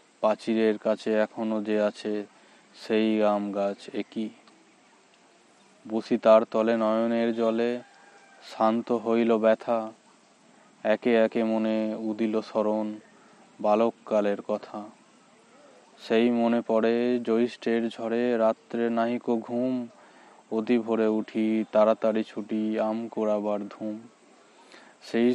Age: 20-39